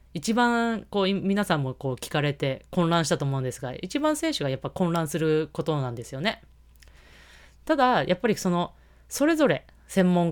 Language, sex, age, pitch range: Japanese, female, 20-39, 140-230 Hz